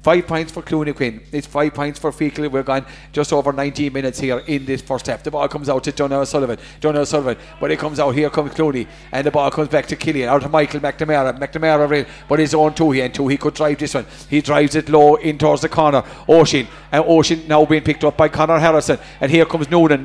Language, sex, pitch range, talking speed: English, male, 150-180 Hz, 250 wpm